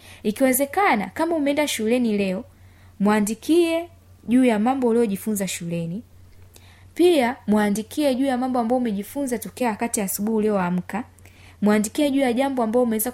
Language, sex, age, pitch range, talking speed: Swahili, female, 20-39, 175-235 Hz, 130 wpm